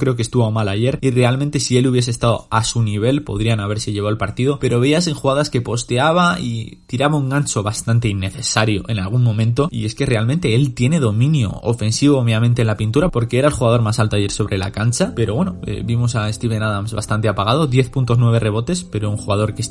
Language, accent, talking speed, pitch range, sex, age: Spanish, Spanish, 215 wpm, 110-130 Hz, male, 20-39